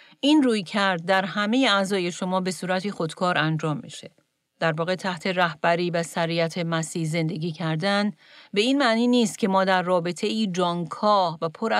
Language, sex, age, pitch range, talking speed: Persian, female, 40-59, 165-205 Hz, 170 wpm